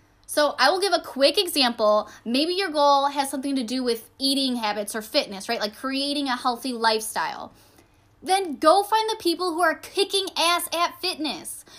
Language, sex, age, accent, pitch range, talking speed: English, female, 10-29, American, 250-330 Hz, 185 wpm